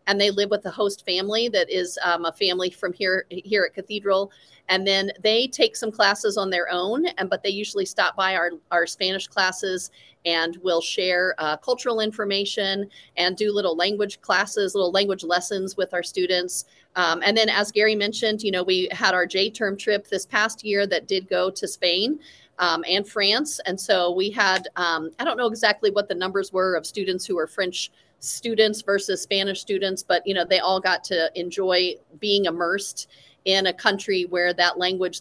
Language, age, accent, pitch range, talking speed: English, 40-59, American, 180-200 Hz, 195 wpm